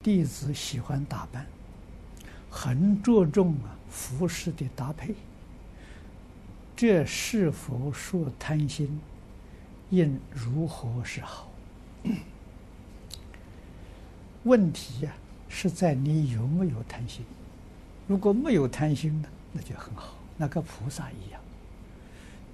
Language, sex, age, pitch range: Chinese, male, 60-79, 100-160 Hz